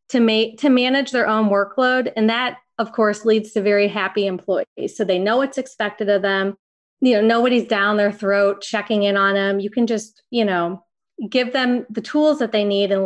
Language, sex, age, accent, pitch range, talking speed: English, female, 30-49, American, 195-240 Hz, 205 wpm